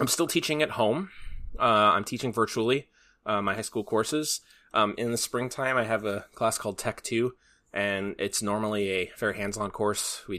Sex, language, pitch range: male, English, 100-120 Hz